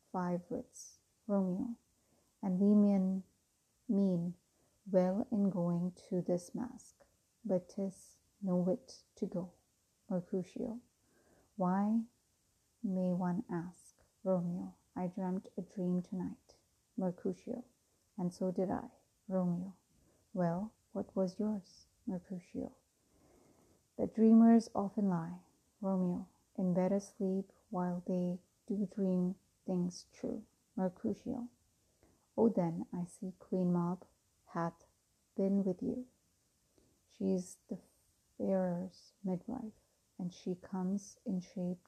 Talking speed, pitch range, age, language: 105 wpm, 180-210 Hz, 30-49, English